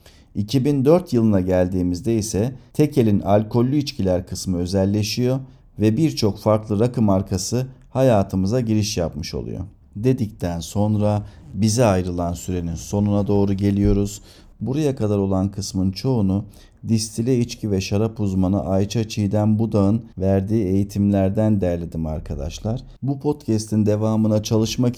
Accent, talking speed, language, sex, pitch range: native, 115 wpm, Turkish, male, 95-120 Hz